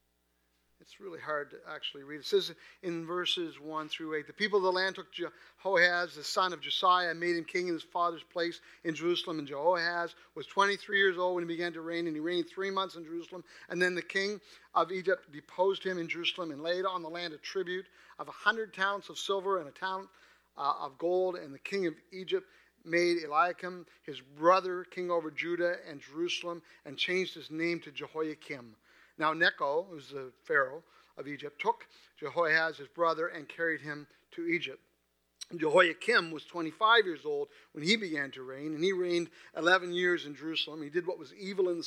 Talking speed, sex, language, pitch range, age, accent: 205 wpm, male, English, 160-185 Hz, 50-69, American